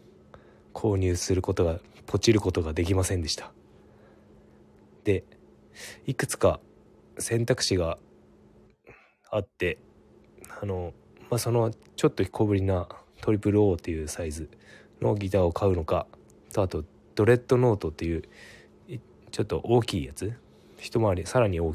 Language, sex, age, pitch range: Japanese, male, 20-39, 85-110 Hz